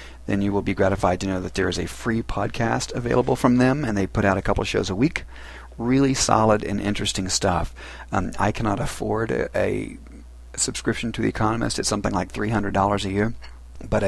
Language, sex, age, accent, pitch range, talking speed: English, male, 40-59, American, 90-105 Hz, 205 wpm